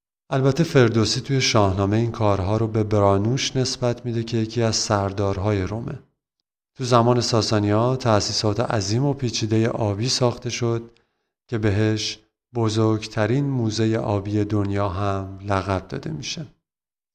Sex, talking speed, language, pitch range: male, 130 wpm, Persian, 105-125 Hz